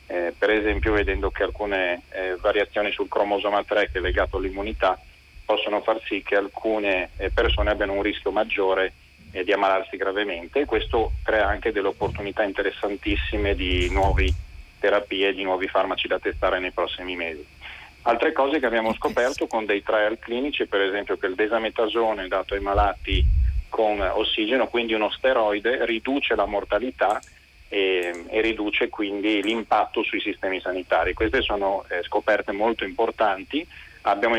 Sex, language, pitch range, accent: male, Italian, 95-115 Hz, native